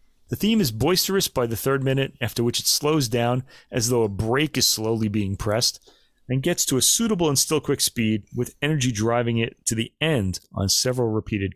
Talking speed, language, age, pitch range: 210 wpm, English, 30-49, 110-150 Hz